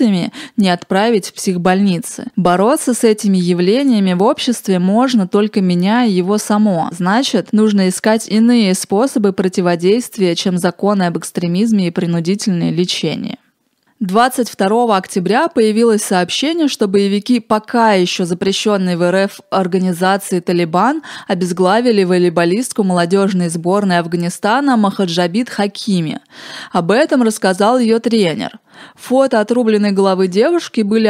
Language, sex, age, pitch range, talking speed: Russian, female, 20-39, 190-235 Hz, 110 wpm